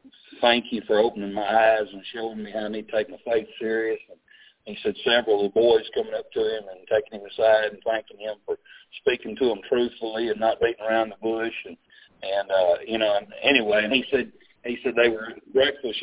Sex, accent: male, American